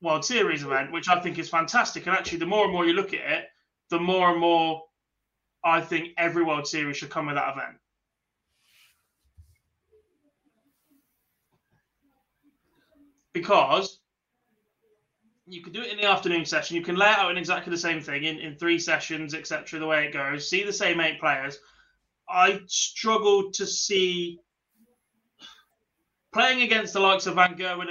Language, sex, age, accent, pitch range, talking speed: English, male, 20-39, British, 155-200 Hz, 165 wpm